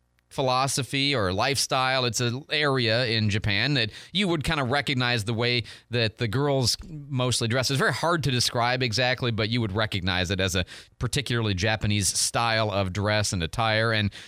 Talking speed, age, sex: 175 wpm, 30-49, male